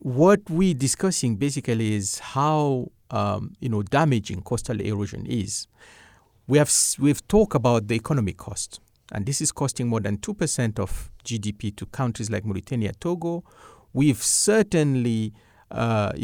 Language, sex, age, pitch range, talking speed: English, male, 50-69, 110-150 Hz, 145 wpm